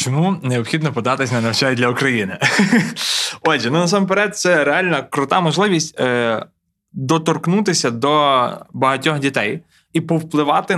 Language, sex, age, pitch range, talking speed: Ukrainian, male, 20-39, 130-160 Hz, 115 wpm